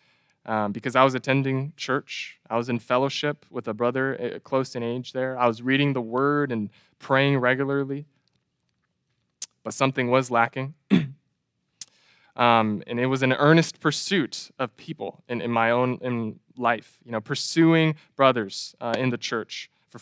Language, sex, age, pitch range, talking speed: English, male, 20-39, 115-140 Hz, 160 wpm